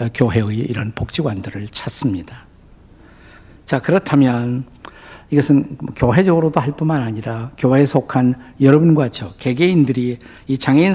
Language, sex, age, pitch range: Korean, male, 50-69, 120-160 Hz